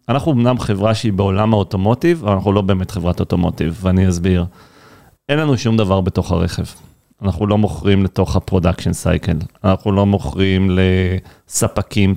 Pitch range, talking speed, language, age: 95-120 Hz, 150 wpm, Hebrew, 40-59